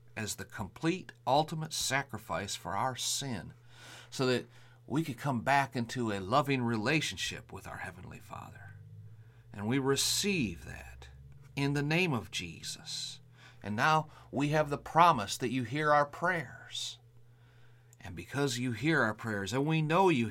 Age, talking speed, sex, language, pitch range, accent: 40-59, 155 wpm, male, English, 105-135 Hz, American